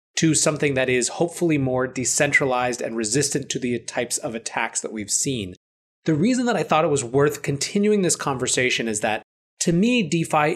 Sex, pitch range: male, 125-160 Hz